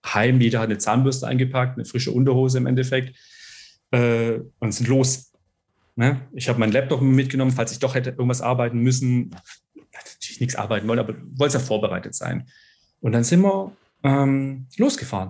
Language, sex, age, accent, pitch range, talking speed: German, male, 40-59, German, 120-145 Hz, 175 wpm